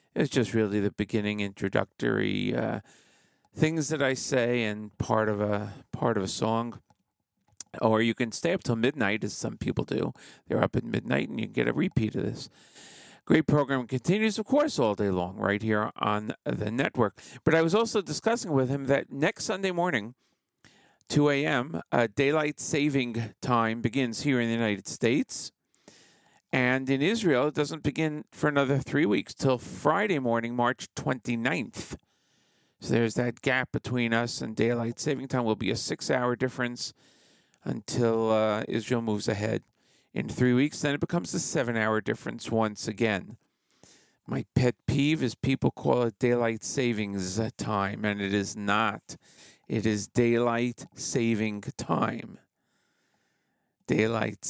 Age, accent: 50-69, American